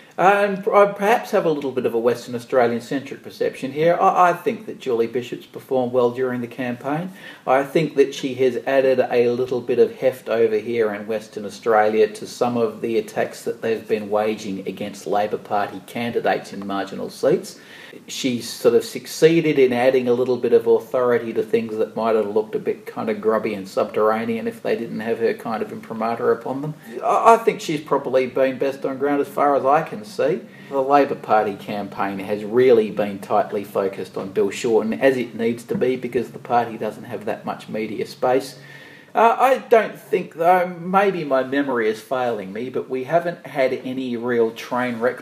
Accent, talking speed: Australian, 195 wpm